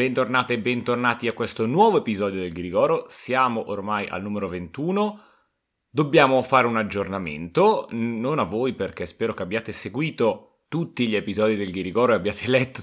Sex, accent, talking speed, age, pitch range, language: male, native, 160 wpm, 30-49, 105-125 Hz, Italian